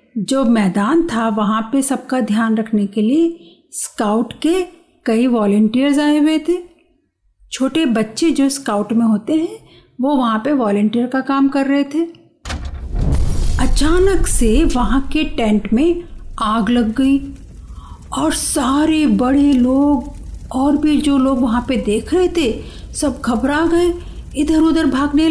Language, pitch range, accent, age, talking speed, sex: Hindi, 230-310 Hz, native, 50-69, 145 wpm, female